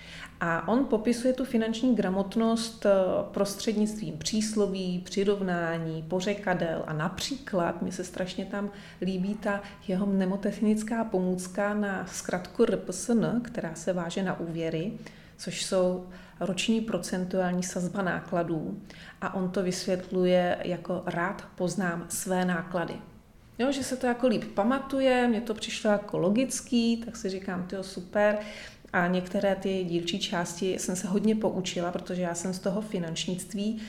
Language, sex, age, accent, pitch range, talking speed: Czech, female, 30-49, native, 180-205 Hz, 135 wpm